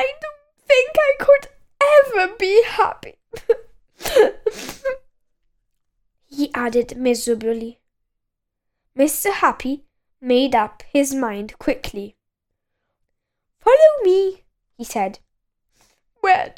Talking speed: 85 wpm